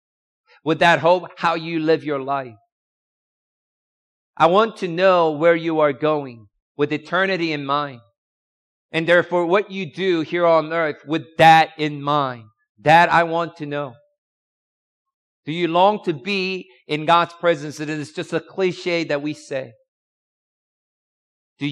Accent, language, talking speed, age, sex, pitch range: American, English, 150 wpm, 50-69, male, 125-170 Hz